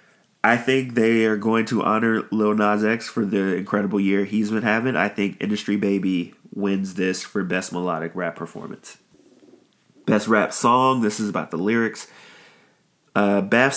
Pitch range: 95-115 Hz